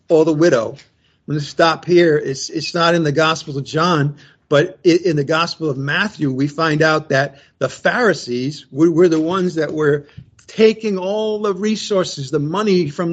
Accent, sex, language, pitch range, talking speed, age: American, male, English, 135-180 Hz, 190 wpm, 50-69